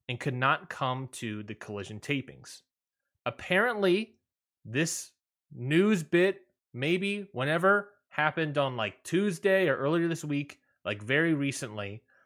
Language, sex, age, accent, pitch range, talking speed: English, male, 20-39, American, 120-170 Hz, 120 wpm